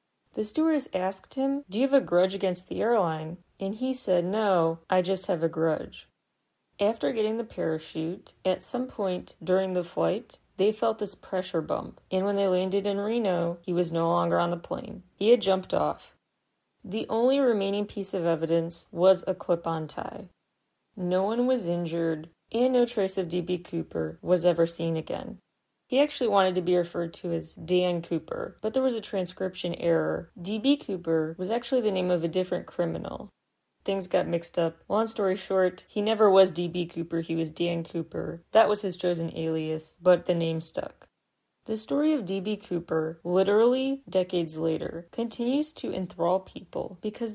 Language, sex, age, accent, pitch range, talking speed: English, female, 30-49, American, 170-215 Hz, 180 wpm